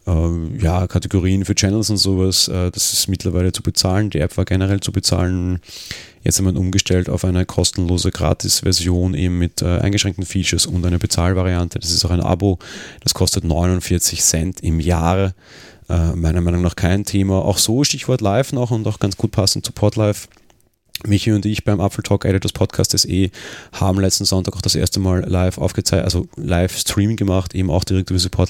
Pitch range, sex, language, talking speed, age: 85-100 Hz, male, German, 185 wpm, 30-49